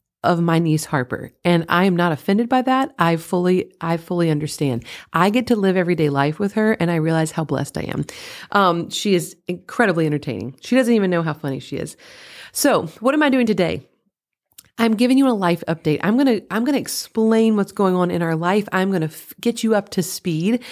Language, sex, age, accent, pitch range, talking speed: English, female, 30-49, American, 170-225 Hz, 225 wpm